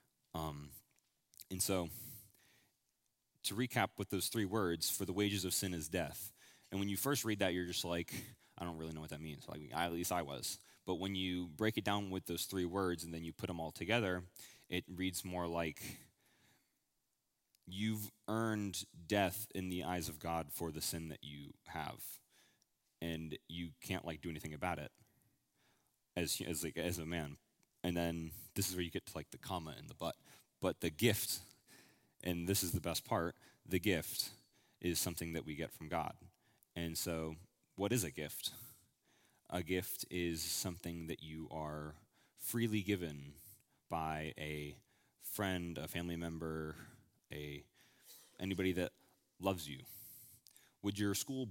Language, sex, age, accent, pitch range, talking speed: English, male, 20-39, American, 80-100 Hz, 170 wpm